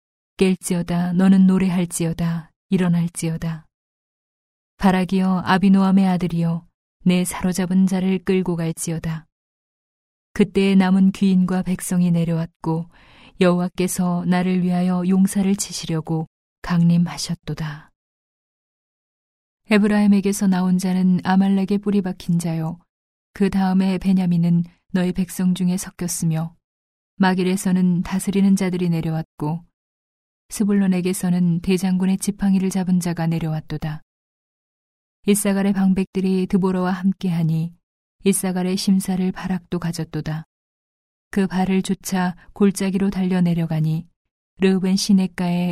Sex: female